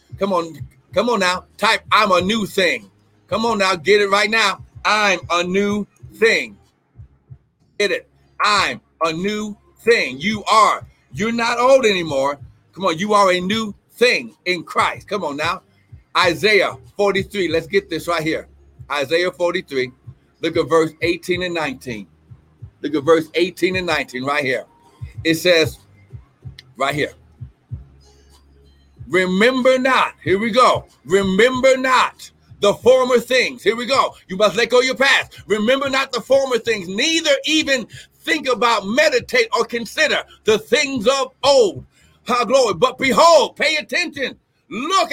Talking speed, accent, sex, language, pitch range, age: 150 wpm, American, male, English, 170-255 Hz, 60-79